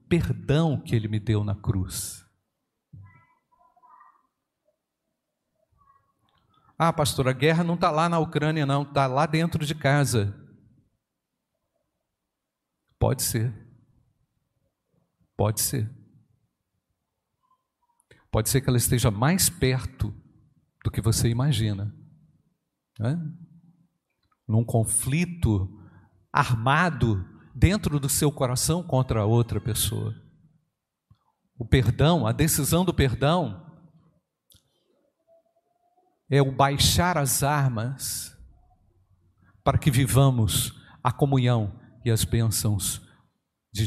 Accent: Brazilian